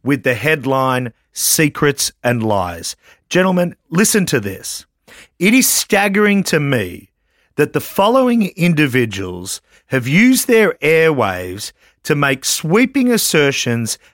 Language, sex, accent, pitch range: English, male, Australian, 120-195 Hz